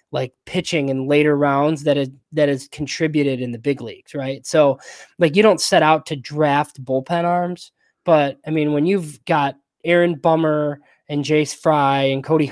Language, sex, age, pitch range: English, male, 20-39, 140-160 Hz